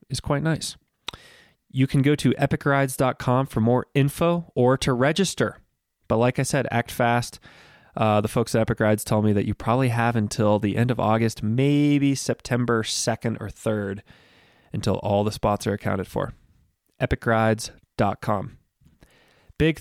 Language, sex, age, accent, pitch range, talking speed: English, male, 20-39, American, 110-130 Hz, 155 wpm